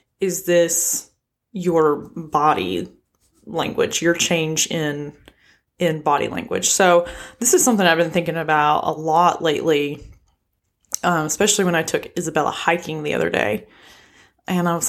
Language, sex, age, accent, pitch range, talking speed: English, female, 20-39, American, 155-185 Hz, 140 wpm